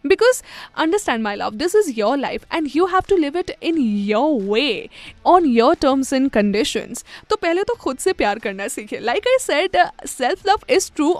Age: 10-29